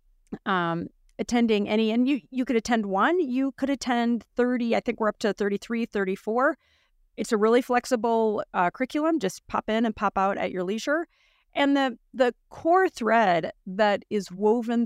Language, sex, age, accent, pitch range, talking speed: English, female, 40-59, American, 185-245 Hz, 175 wpm